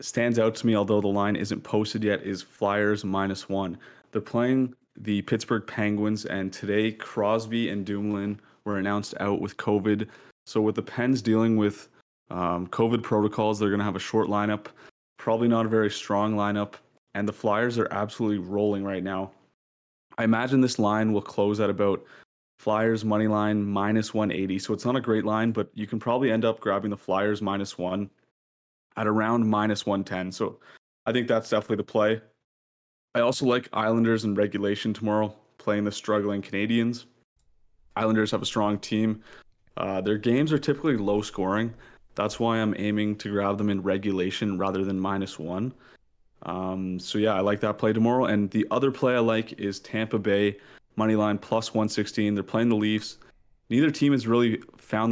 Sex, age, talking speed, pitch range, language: male, 20-39, 180 wpm, 100-110 Hz, English